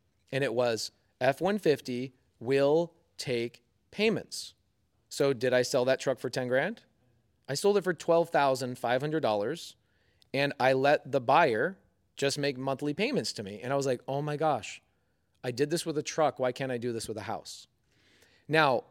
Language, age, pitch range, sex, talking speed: English, 30-49, 115-140 Hz, male, 170 wpm